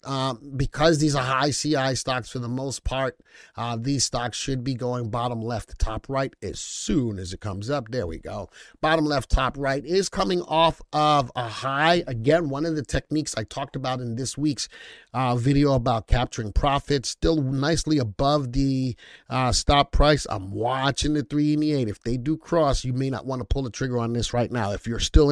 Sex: male